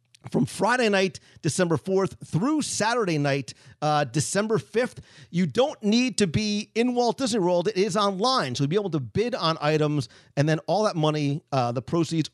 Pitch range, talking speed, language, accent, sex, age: 145-200 Hz, 190 wpm, English, American, male, 40-59